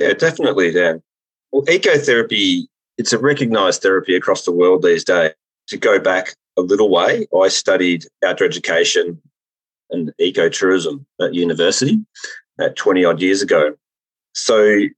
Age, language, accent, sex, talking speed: 30-49, English, Australian, male, 130 wpm